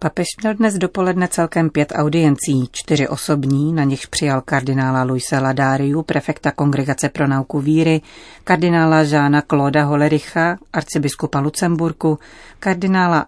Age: 40-59